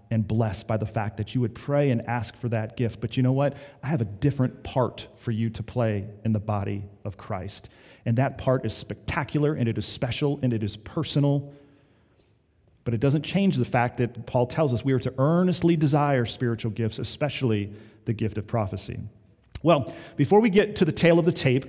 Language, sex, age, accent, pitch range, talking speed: English, male, 40-59, American, 120-155 Hz, 215 wpm